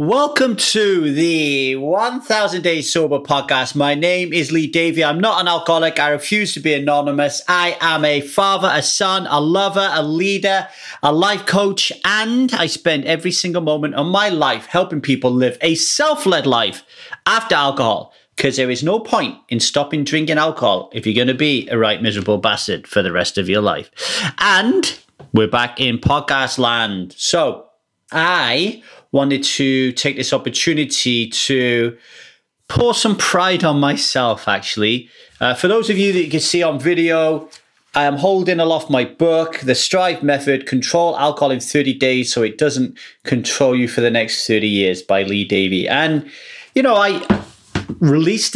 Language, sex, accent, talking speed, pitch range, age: English, male, British, 170 wpm, 130-175 Hz, 30-49